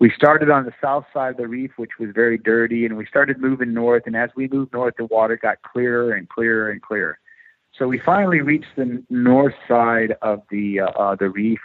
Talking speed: 225 wpm